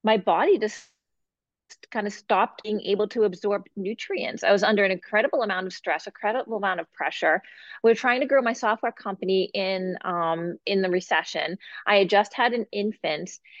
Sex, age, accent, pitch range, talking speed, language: female, 30-49, American, 190-230 Hz, 190 wpm, English